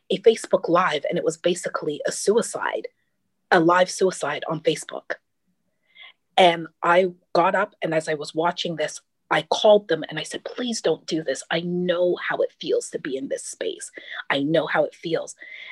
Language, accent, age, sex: English, American, 30-49, female